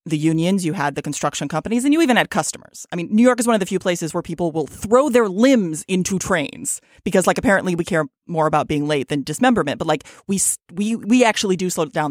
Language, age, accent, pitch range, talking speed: English, 30-49, American, 160-230 Hz, 250 wpm